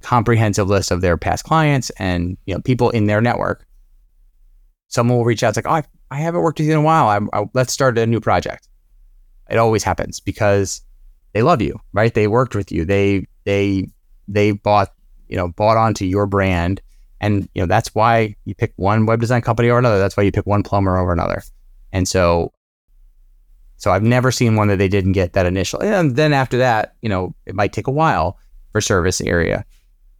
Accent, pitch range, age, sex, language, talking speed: American, 90-115 Hz, 30-49, male, English, 210 wpm